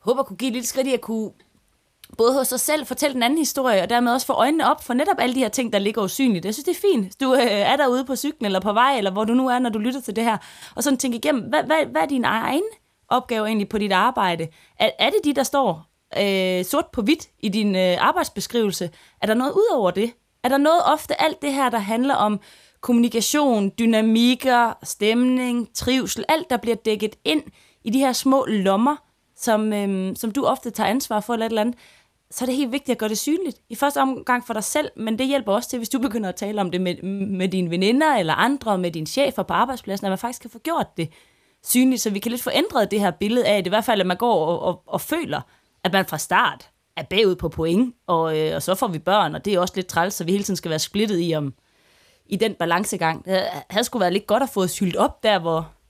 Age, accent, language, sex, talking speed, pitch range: 20-39, native, Danish, female, 255 wpm, 195-260 Hz